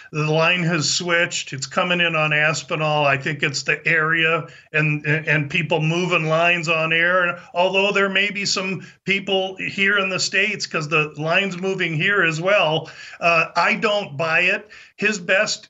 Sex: male